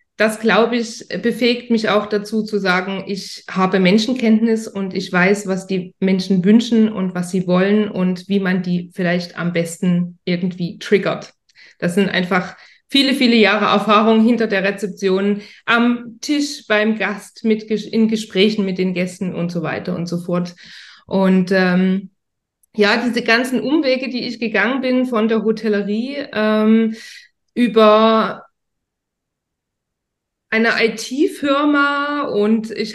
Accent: German